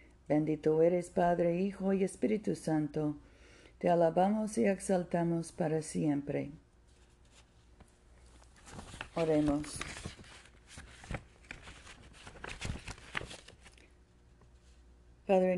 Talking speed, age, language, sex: 60 wpm, 50-69, Spanish, female